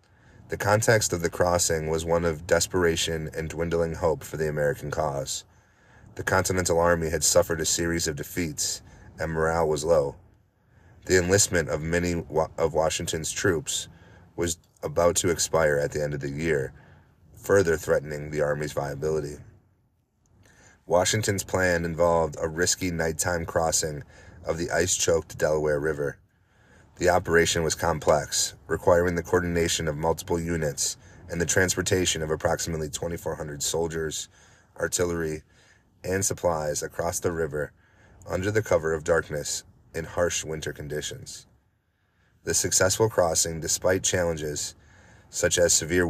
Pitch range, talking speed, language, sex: 80-95 Hz, 135 wpm, English, male